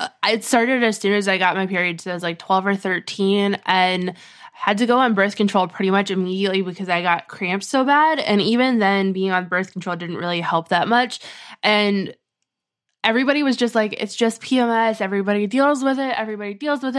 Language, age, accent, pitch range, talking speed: English, 20-39, American, 190-230 Hz, 210 wpm